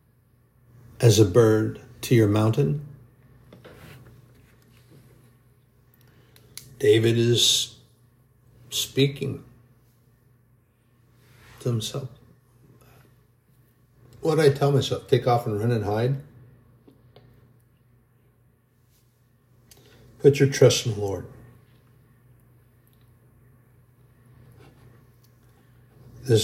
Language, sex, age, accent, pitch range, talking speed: English, male, 60-79, American, 120-130 Hz, 65 wpm